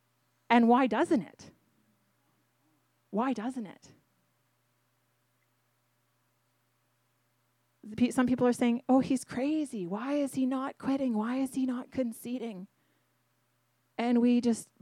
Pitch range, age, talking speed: 175-260 Hz, 30-49, 110 wpm